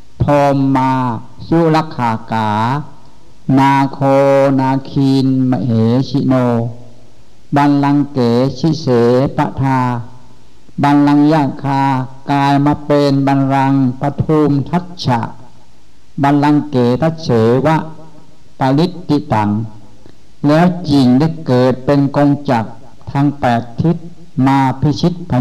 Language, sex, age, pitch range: English, male, 60-79, 125-145 Hz